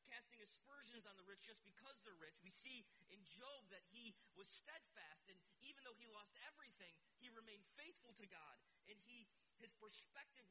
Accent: American